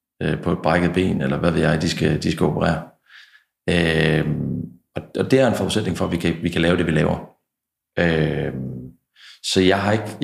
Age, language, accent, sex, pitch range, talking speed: 40-59, Danish, native, male, 80-95 Hz, 205 wpm